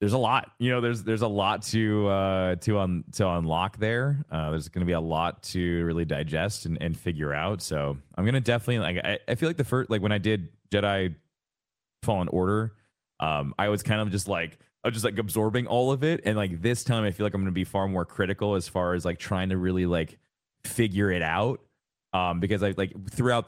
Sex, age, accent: male, 20-39, American